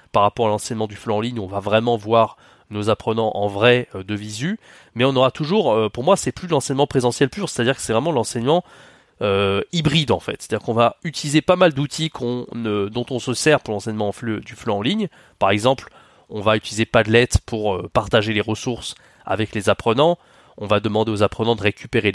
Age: 20-39